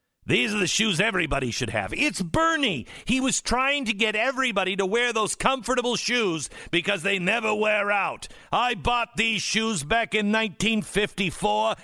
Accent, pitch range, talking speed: American, 135-215 Hz, 160 wpm